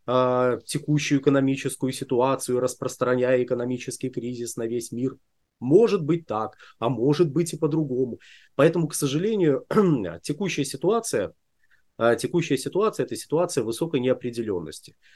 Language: Russian